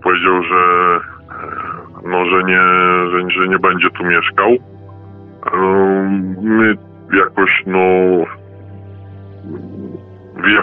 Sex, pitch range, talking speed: female, 90-100 Hz, 90 wpm